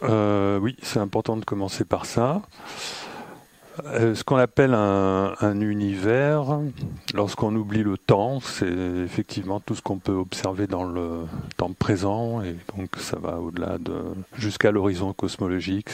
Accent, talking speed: French, 145 wpm